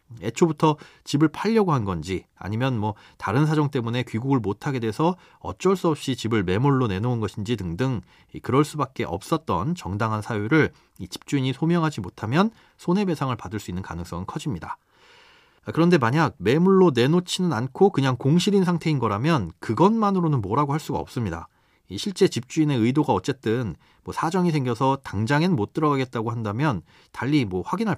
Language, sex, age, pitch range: Korean, male, 40-59, 110-160 Hz